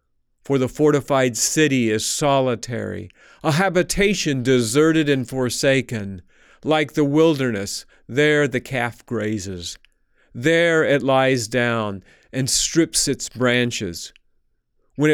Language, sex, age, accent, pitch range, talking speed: English, male, 50-69, American, 115-160 Hz, 105 wpm